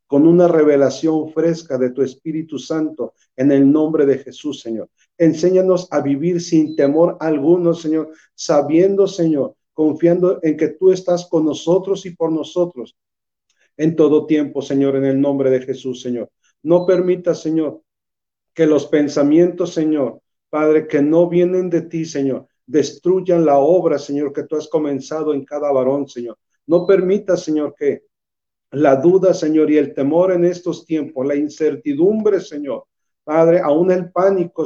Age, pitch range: 50-69, 145-175 Hz